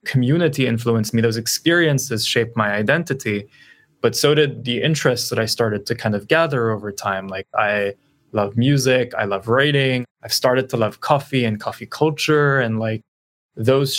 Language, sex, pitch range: English, male, 110-135 Hz